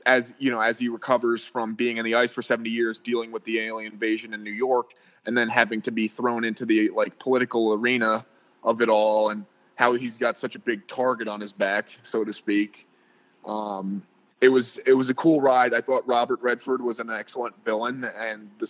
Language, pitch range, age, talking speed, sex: English, 110-125 Hz, 20-39, 220 wpm, male